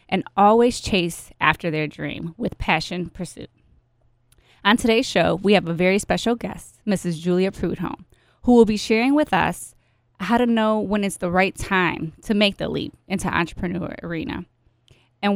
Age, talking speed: 20-39, 170 wpm